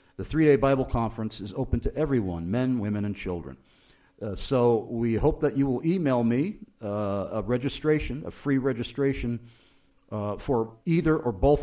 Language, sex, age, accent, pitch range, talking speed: English, male, 50-69, American, 105-135 Hz, 165 wpm